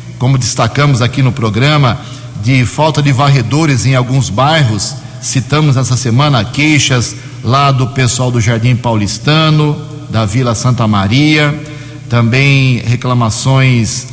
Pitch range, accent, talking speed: 120-150 Hz, Brazilian, 120 wpm